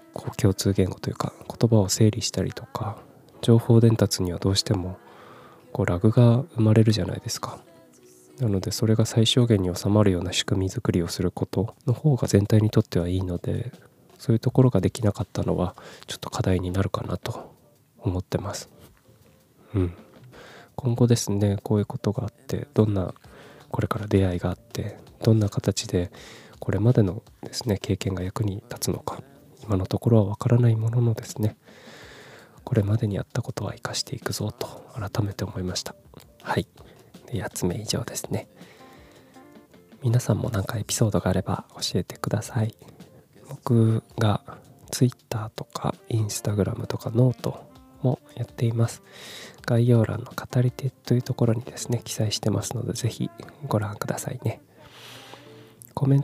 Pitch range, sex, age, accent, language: 100-125 Hz, male, 20-39, native, Japanese